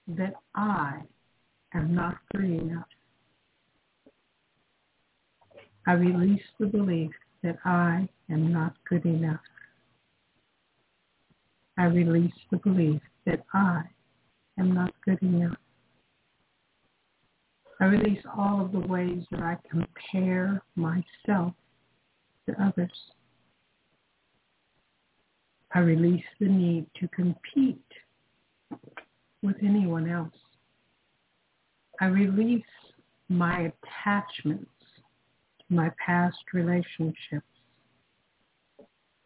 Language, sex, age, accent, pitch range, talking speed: English, female, 60-79, American, 165-195 Hz, 85 wpm